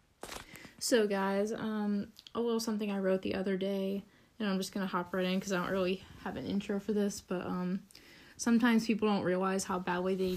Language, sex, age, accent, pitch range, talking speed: English, female, 10-29, American, 185-210 Hz, 215 wpm